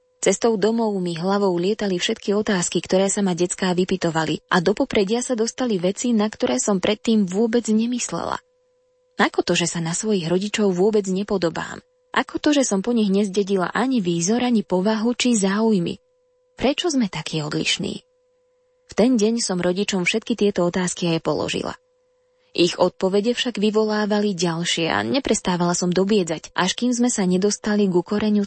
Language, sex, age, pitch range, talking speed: Slovak, female, 20-39, 185-245 Hz, 160 wpm